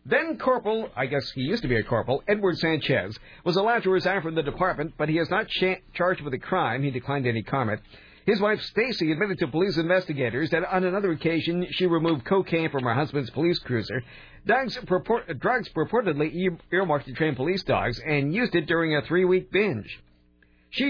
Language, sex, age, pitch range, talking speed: English, male, 50-69, 140-190 Hz, 185 wpm